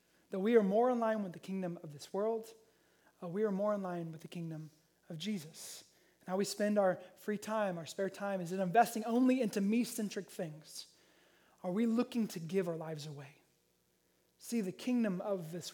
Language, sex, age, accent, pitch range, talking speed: English, male, 20-39, American, 175-230 Hz, 200 wpm